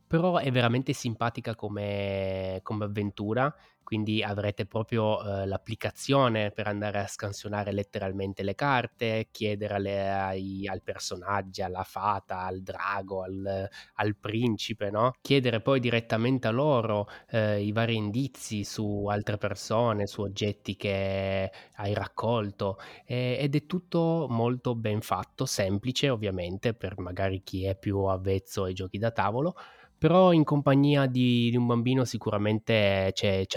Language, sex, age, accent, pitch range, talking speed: Italian, male, 20-39, native, 95-115 Hz, 140 wpm